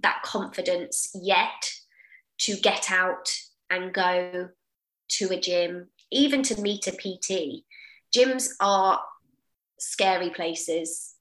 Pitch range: 180-215 Hz